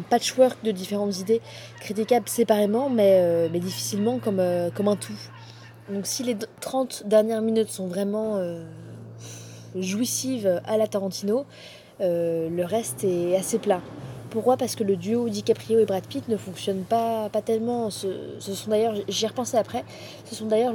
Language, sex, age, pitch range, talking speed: French, female, 20-39, 190-225 Hz, 170 wpm